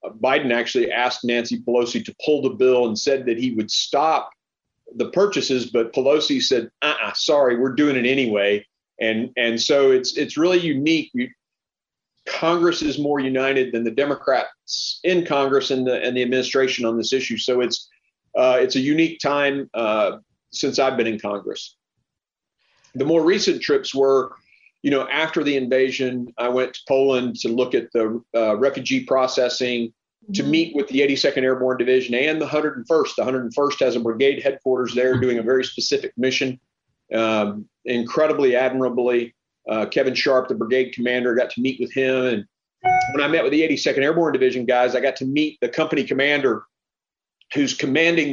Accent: American